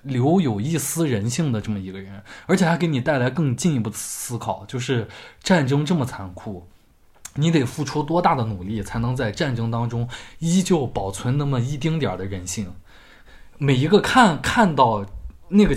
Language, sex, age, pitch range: Chinese, male, 20-39, 100-150 Hz